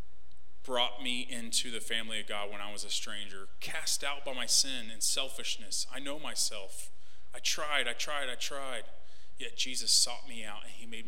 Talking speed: 195 wpm